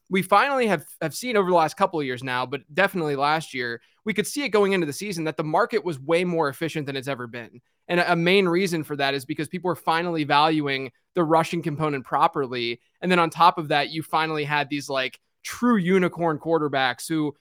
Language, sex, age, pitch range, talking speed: English, male, 20-39, 140-175 Hz, 230 wpm